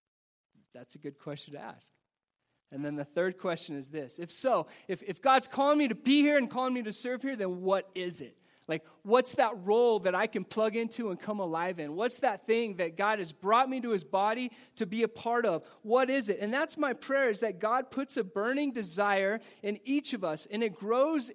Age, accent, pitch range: 30-49, American, 185-250 Hz